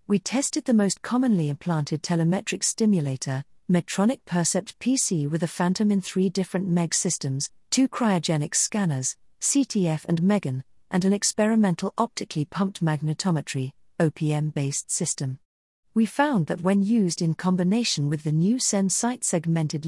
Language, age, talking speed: English, 50-69, 135 wpm